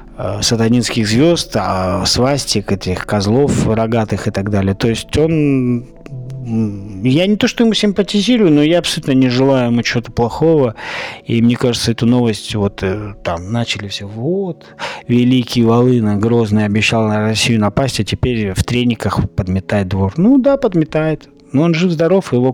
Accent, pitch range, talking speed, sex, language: native, 105-135 Hz, 150 wpm, male, Russian